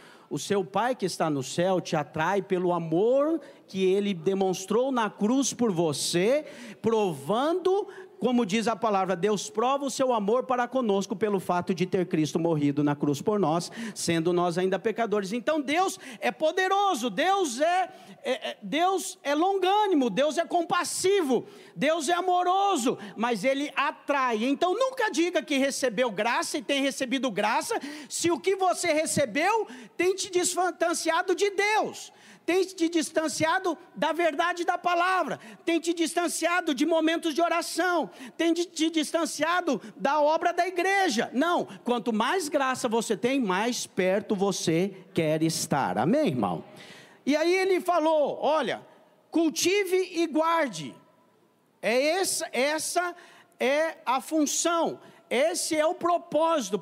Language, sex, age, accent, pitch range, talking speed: English, male, 50-69, Brazilian, 225-340 Hz, 140 wpm